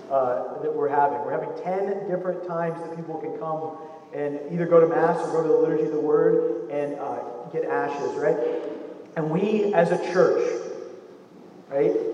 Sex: male